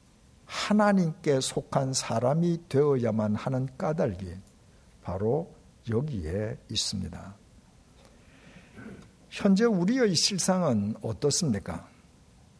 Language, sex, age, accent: Korean, male, 60-79, native